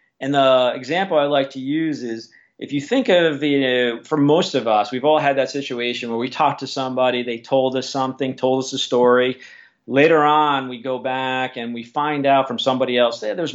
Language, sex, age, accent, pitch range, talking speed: English, male, 40-59, American, 125-155 Hz, 215 wpm